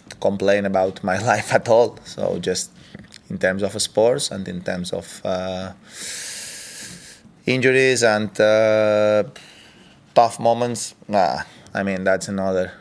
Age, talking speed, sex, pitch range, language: 20-39, 125 wpm, male, 90-105 Hz, German